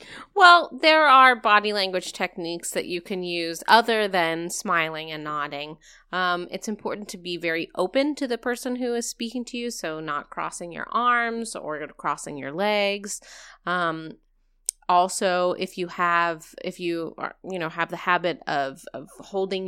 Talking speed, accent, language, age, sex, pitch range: 170 wpm, American, English, 30-49, female, 180-235 Hz